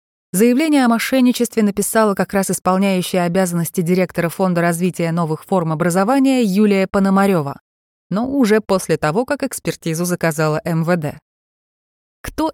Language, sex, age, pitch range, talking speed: Russian, female, 20-39, 160-215 Hz, 120 wpm